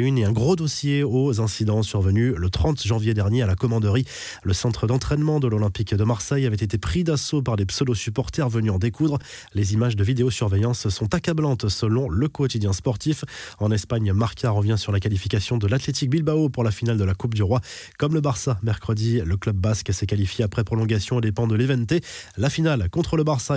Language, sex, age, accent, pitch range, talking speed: French, male, 20-39, French, 110-135 Hz, 200 wpm